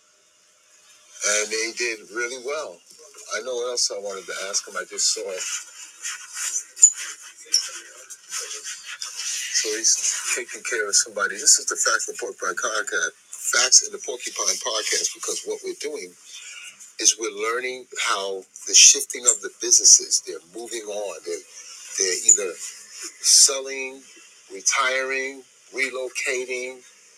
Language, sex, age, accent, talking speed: English, male, 40-59, American, 130 wpm